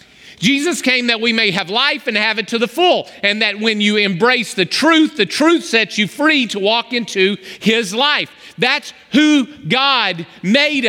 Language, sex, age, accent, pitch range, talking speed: English, male, 40-59, American, 200-275 Hz, 185 wpm